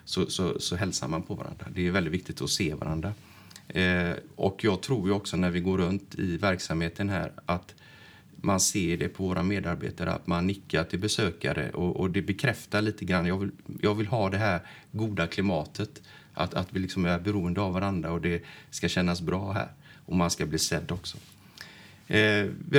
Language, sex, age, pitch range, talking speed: Swedish, male, 30-49, 85-100 Hz, 190 wpm